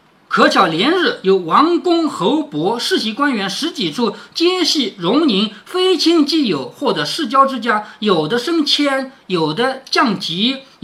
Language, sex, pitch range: Chinese, male, 200-300 Hz